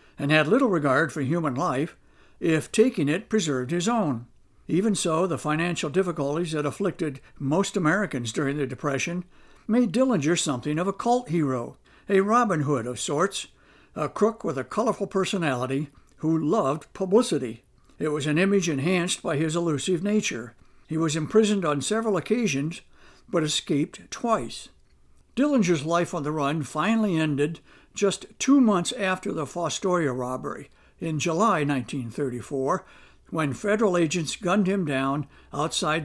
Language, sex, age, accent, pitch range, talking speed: English, male, 60-79, American, 145-195 Hz, 145 wpm